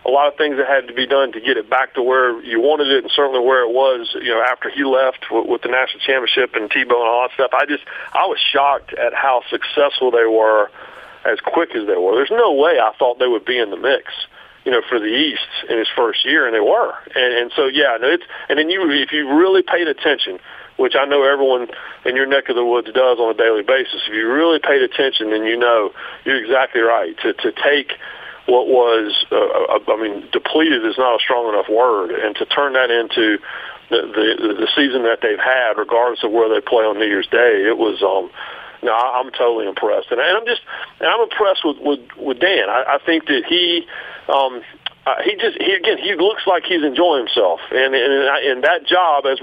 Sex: male